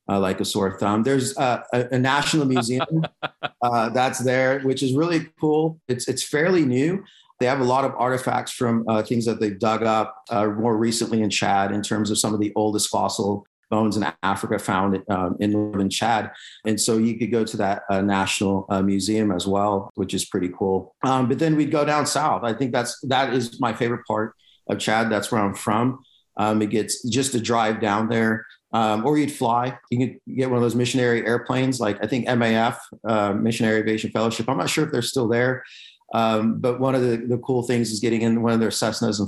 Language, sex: English, male